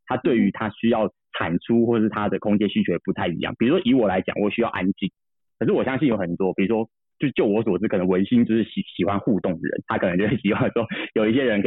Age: 30-49